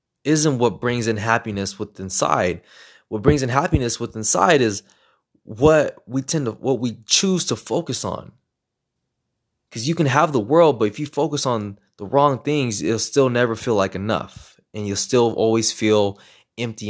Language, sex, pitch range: English, male, 105-125 Hz